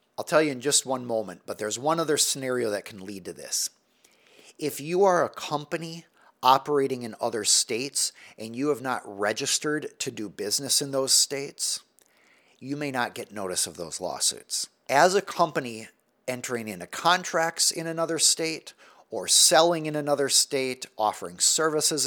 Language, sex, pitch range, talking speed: English, male, 115-155 Hz, 165 wpm